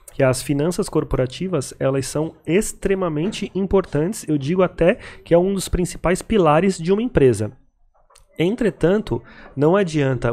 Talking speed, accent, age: 135 wpm, Brazilian, 30-49